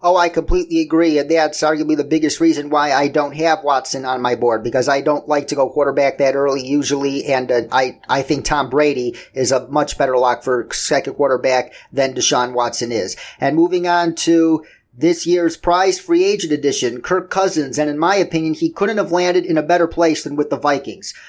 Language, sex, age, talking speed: English, male, 40-59, 210 wpm